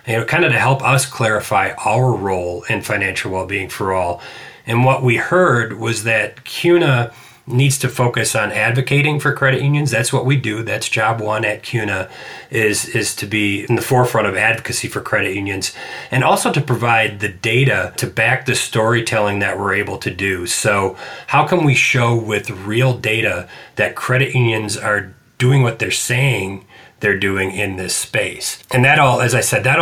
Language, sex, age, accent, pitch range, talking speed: English, male, 30-49, American, 105-125 Hz, 185 wpm